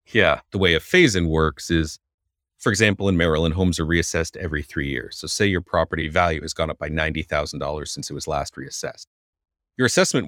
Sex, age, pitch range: male, 40-59, 75-95 Hz